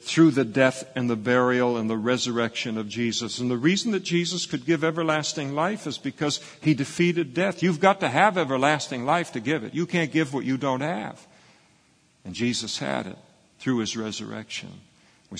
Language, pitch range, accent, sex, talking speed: English, 110-150 Hz, American, male, 190 wpm